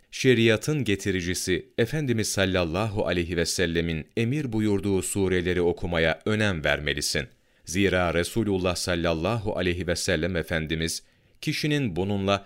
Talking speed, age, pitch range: 105 wpm, 40-59, 85-115 Hz